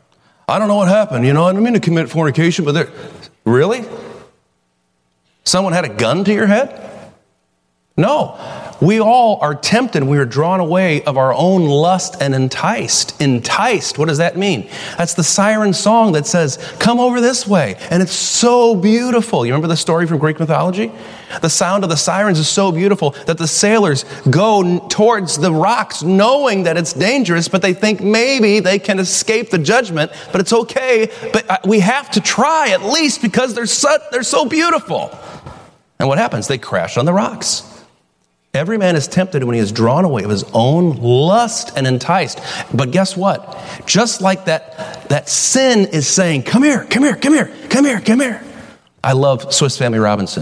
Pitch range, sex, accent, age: 125-210 Hz, male, American, 40-59